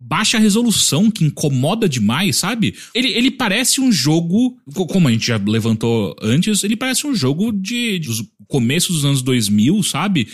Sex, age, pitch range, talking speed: male, 40-59, 125-200 Hz, 170 wpm